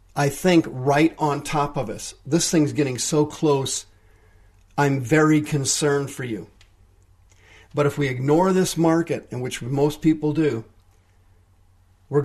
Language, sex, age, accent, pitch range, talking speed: English, male, 50-69, American, 100-155 Hz, 140 wpm